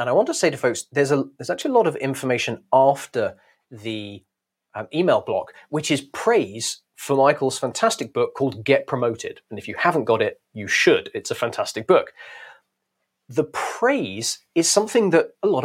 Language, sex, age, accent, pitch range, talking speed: English, male, 30-49, British, 125-160 Hz, 190 wpm